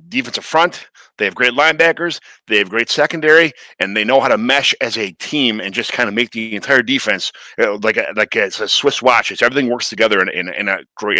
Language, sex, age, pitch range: English, male, 30-49, 100-120 Hz